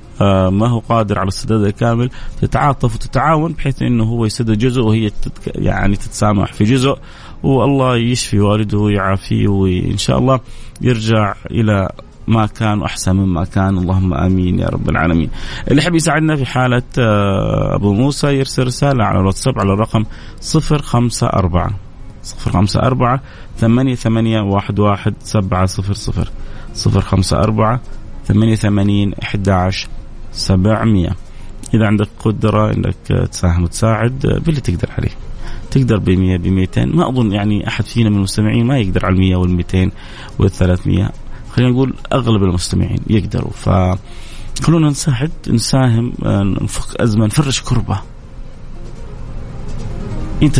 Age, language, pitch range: 30-49, Arabic, 100-125 Hz